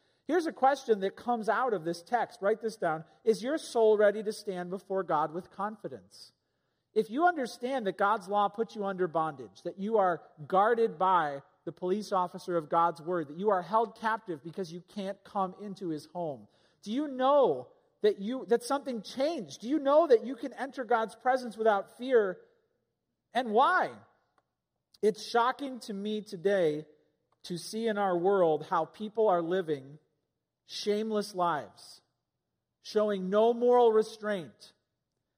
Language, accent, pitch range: English, American, 190-245 Hz